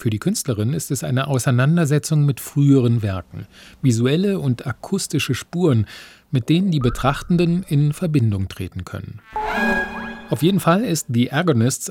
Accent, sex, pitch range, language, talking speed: German, male, 110-150 Hz, German, 140 wpm